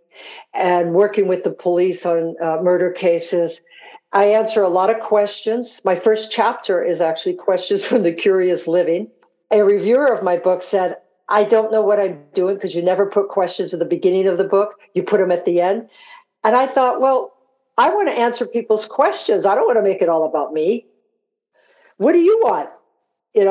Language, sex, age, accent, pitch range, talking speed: English, female, 60-79, American, 180-255 Hz, 200 wpm